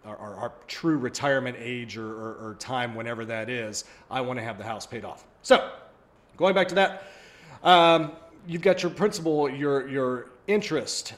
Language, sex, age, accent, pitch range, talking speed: English, male, 30-49, American, 120-160 Hz, 175 wpm